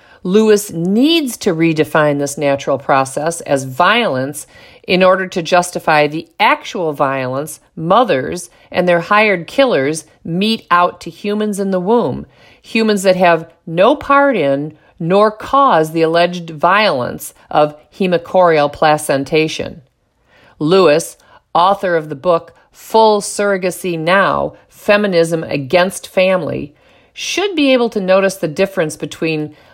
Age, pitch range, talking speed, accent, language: 50-69, 155-195 Hz, 125 wpm, American, English